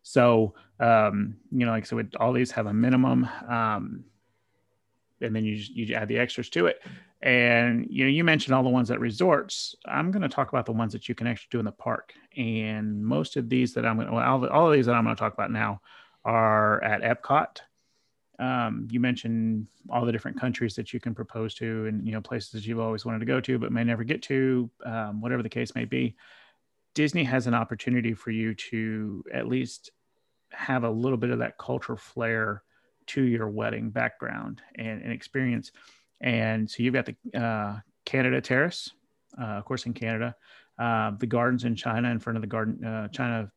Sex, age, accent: male, 30-49, American